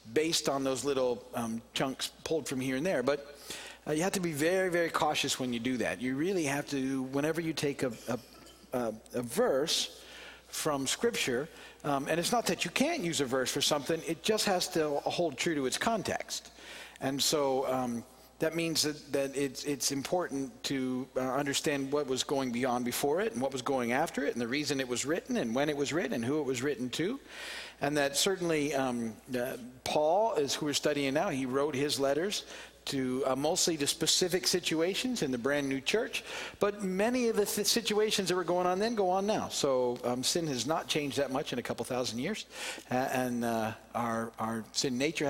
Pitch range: 130-165 Hz